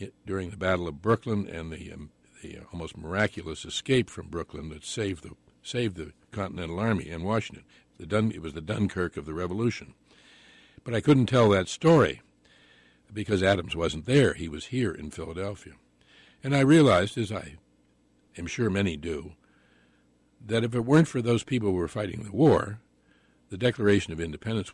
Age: 60-79